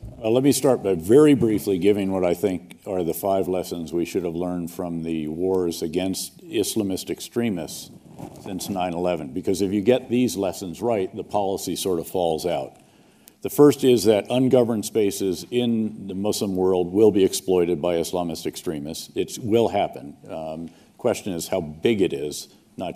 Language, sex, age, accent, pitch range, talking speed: English, male, 50-69, American, 85-110 Hz, 170 wpm